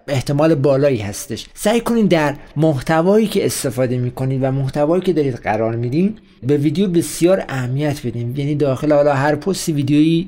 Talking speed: 160 wpm